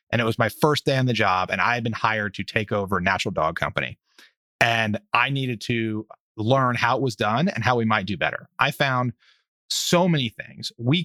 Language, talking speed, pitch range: English, 230 wpm, 110-150 Hz